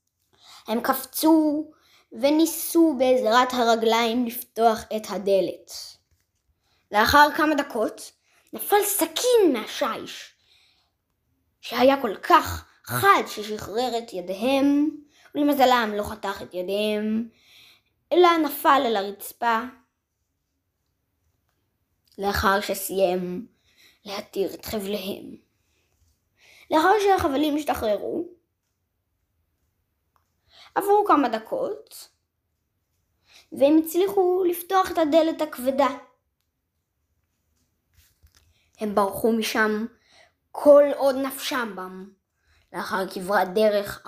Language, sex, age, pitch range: Hebrew, female, 20-39, 180-285 Hz